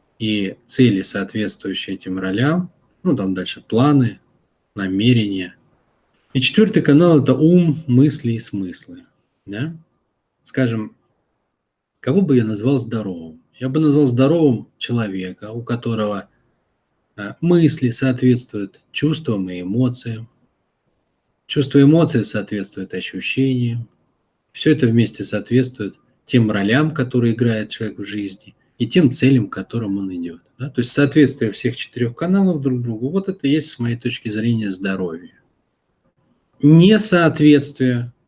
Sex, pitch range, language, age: male, 100-135 Hz, Russian, 20-39